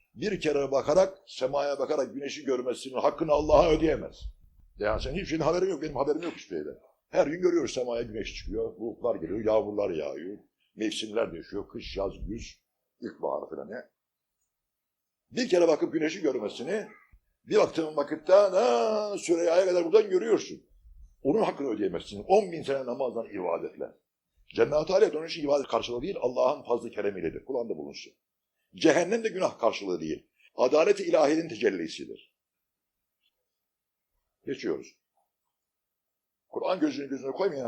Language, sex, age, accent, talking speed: Turkish, male, 60-79, native, 135 wpm